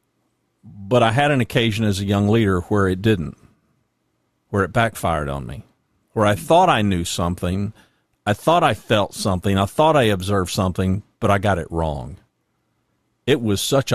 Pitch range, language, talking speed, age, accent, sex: 95-115 Hz, English, 175 wpm, 50-69, American, male